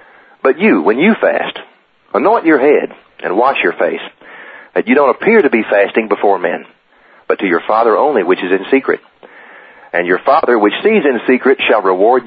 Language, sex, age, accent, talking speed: English, male, 40-59, American, 190 wpm